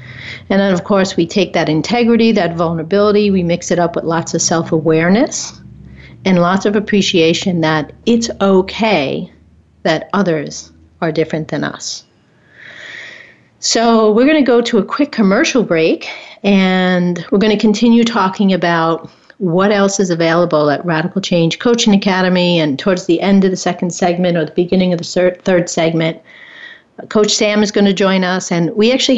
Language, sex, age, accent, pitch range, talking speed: English, female, 50-69, American, 170-210 Hz, 170 wpm